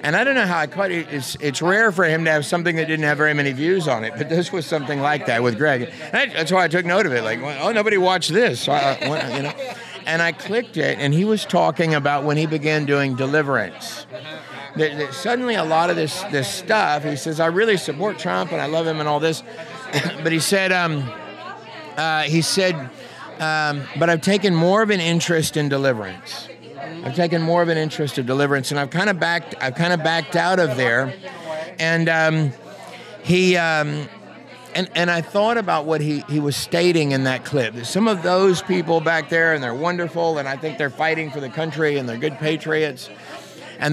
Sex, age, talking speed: male, 50-69, 225 wpm